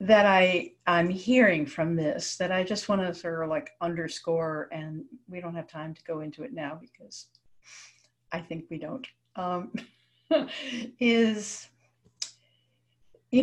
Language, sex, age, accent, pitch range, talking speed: English, female, 60-79, American, 160-235 Hz, 145 wpm